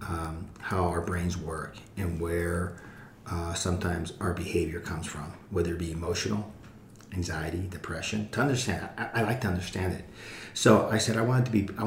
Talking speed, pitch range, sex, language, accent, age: 175 wpm, 90-110 Hz, male, English, American, 40-59